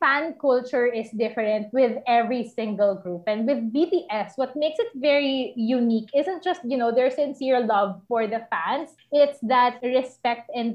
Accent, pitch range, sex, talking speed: native, 225-275 Hz, female, 165 wpm